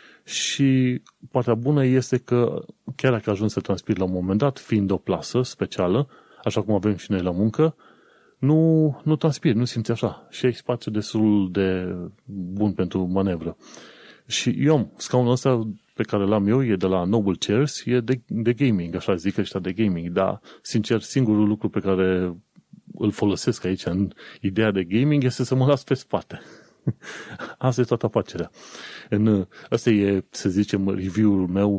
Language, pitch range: Romanian, 95-125 Hz